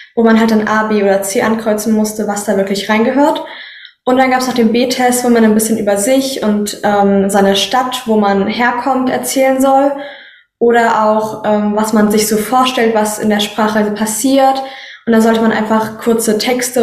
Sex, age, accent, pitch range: female, 10-29, German, 210-250 Hz